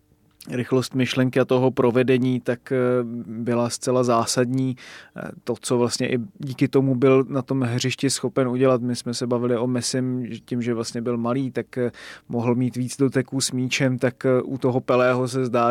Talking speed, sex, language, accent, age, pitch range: 170 wpm, male, Czech, native, 20-39, 125-135 Hz